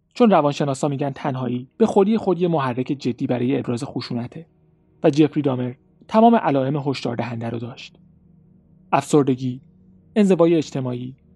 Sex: male